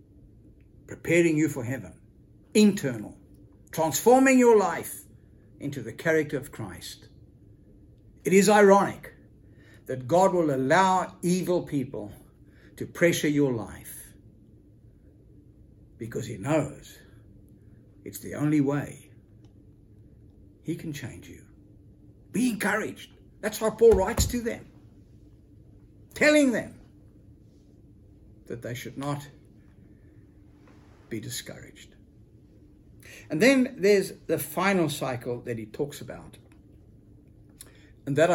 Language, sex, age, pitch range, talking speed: English, male, 60-79, 105-160 Hz, 100 wpm